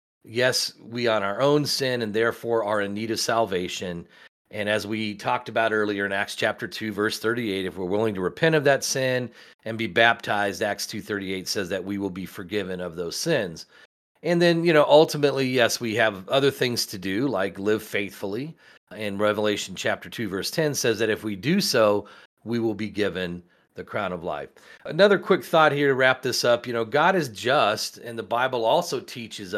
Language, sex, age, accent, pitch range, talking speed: English, male, 40-59, American, 105-140 Hz, 205 wpm